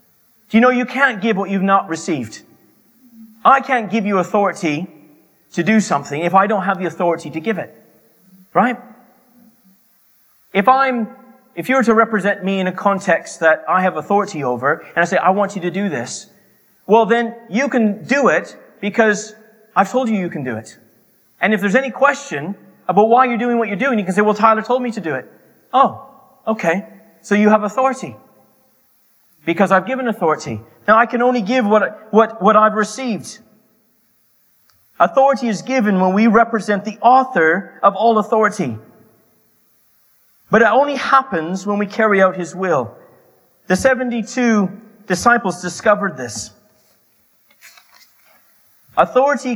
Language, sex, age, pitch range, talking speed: English, male, 30-49, 185-235 Hz, 165 wpm